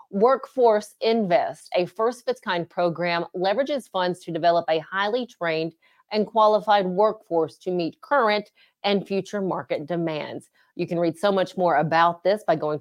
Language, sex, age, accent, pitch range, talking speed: English, female, 30-49, American, 165-210 Hz, 165 wpm